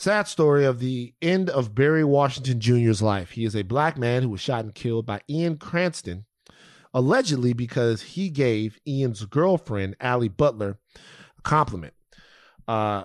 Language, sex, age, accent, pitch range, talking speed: English, male, 30-49, American, 110-145 Hz, 155 wpm